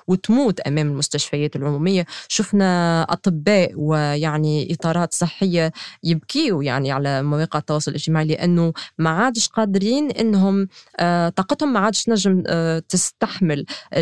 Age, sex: 20-39, female